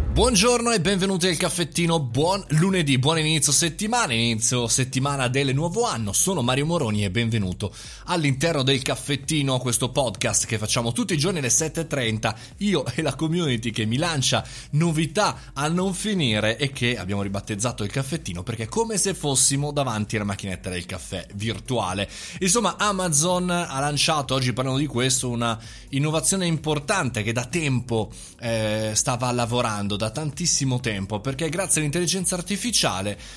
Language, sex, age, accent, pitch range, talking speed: Italian, male, 30-49, native, 115-160 Hz, 155 wpm